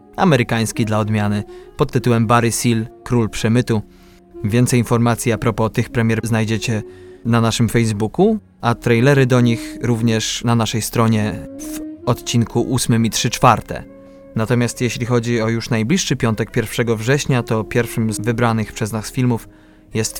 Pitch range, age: 110-125 Hz, 20-39